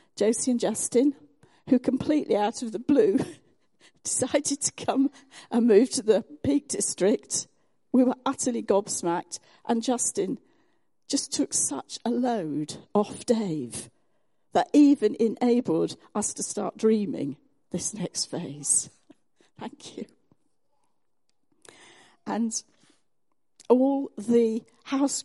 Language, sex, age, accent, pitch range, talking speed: English, female, 50-69, British, 195-275 Hz, 110 wpm